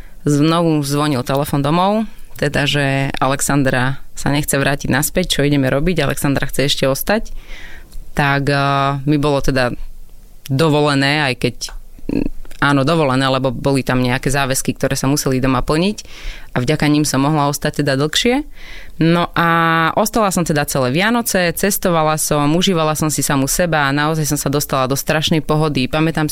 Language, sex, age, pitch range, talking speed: Slovak, female, 20-39, 140-165 Hz, 155 wpm